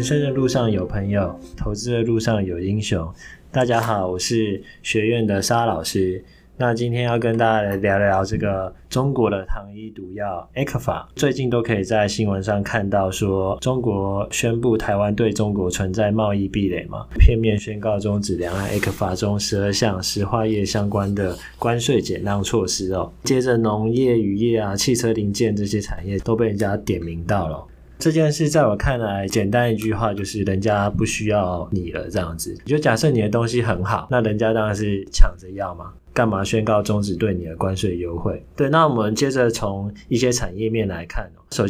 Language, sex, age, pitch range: Chinese, male, 20-39, 95-115 Hz